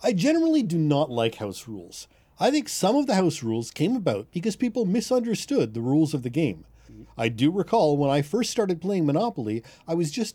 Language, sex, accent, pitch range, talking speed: English, male, American, 120-195 Hz, 210 wpm